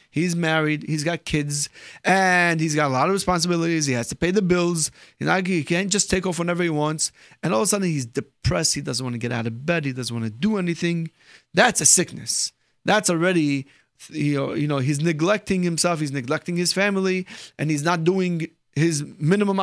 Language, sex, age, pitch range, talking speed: English, male, 30-49, 145-185 Hz, 215 wpm